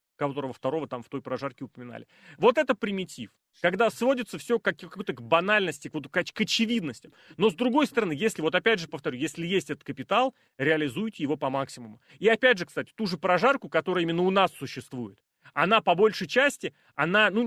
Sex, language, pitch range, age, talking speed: male, Russian, 155-230 Hz, 30-49, 185 wpm